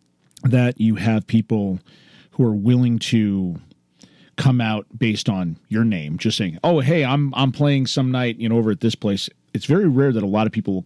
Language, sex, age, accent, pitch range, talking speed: English, male, 40-59, American, 100-140 Hz, 210 wpm